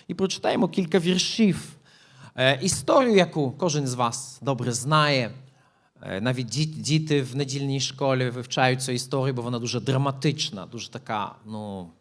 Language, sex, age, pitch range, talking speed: Ukrainian, male, 40-59, 135-195 Hz, 135 wpm